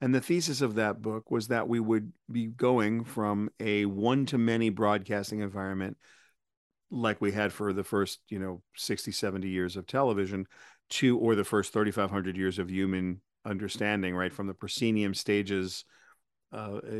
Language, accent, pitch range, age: English, American, 100-115 Hz, 50-69